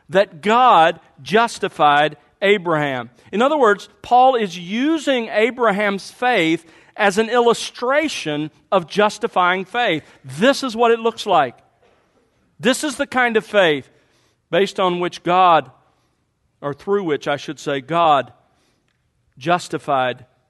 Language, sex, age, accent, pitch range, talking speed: English, male, 40-59, American, 150-210 Hz, 125 wpm